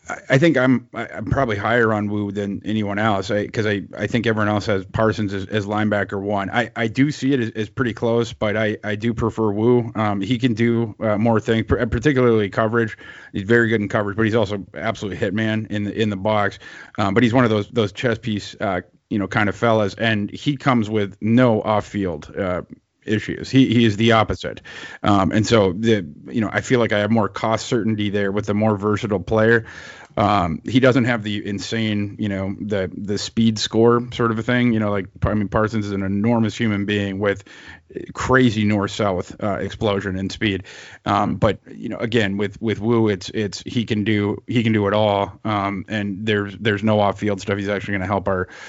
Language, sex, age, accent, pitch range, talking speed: English, male, 30-49, American, 100-115 Hz, 220 wpm